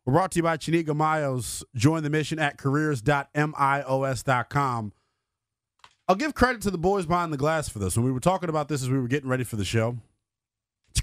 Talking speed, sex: 205 wpm, male